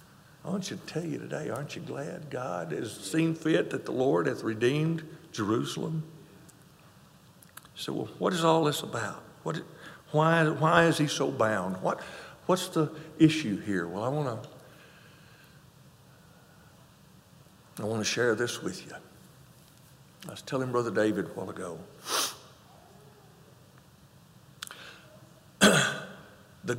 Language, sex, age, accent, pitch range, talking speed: English, male, 60-79, American, 130-160 Hz, 130 wpm